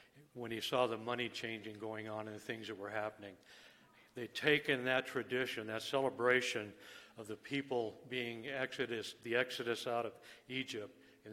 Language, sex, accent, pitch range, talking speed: English, male, American, 110-130 Hz, 165 wpm